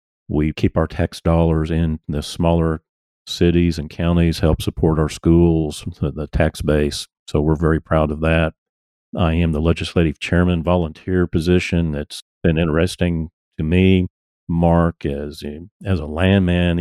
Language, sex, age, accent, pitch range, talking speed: English, male, 50-69, American, 75-90 Hz, 145 wpm